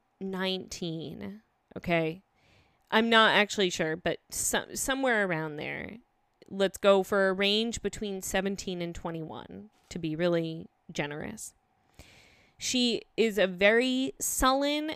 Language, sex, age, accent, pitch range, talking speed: English, female, 20-39, American, 185-230 Hz, 110 wpm